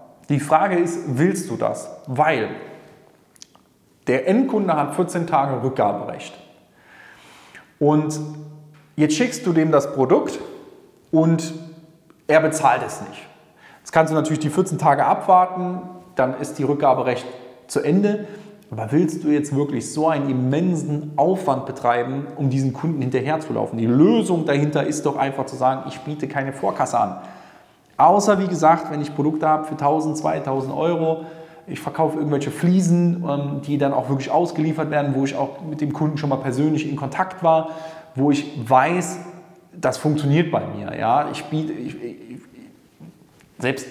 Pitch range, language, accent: 140-175 Hz, German, German